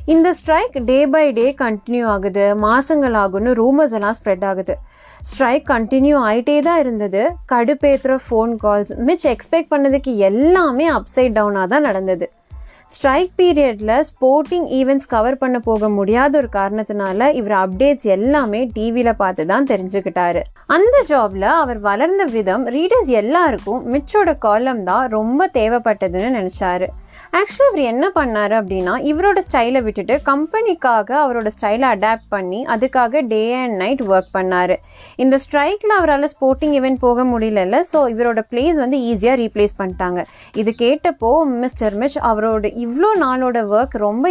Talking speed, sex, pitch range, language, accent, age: 140 wpm, female, 210-290 Hz, Tamil, native, 20-39